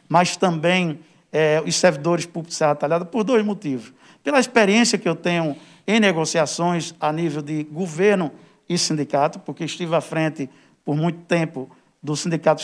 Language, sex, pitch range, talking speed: Portuguese, male, 160-205 Hz, 160 wpm